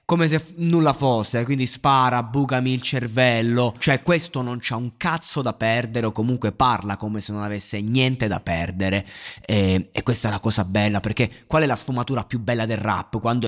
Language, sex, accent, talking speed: Italian, male, native, 195 wpm